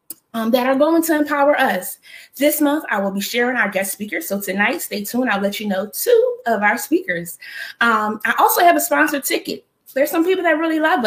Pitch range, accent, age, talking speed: 210-310 Hz, American, 20-39, 220 wpm